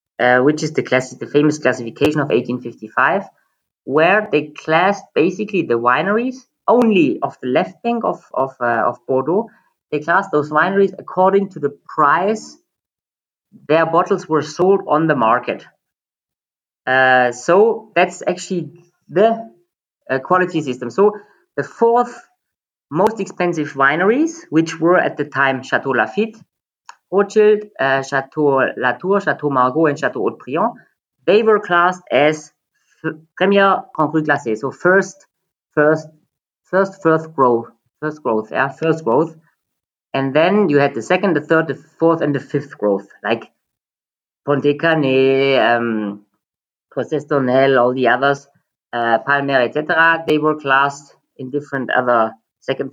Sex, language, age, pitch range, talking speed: female, Spanish, 20-39, 135-180 Hz, 135 wpm